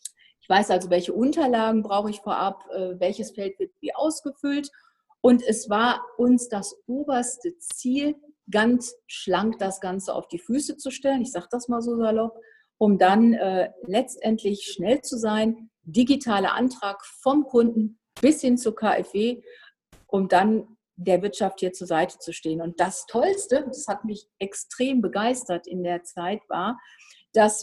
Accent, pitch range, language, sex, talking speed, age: German, 195-245 Hz, German, female, 155 wpm, 50-69